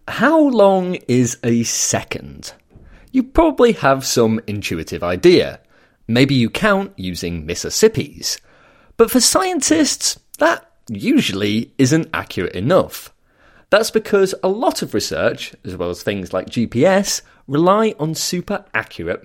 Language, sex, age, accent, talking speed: English, male, 30-49, British, 125 wpm